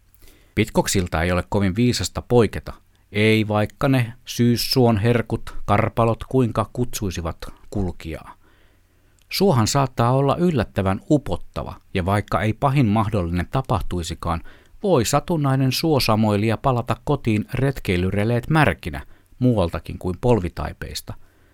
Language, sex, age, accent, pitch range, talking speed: Finnish, male, 50-69, native, 90-120 Hz, 100 wpm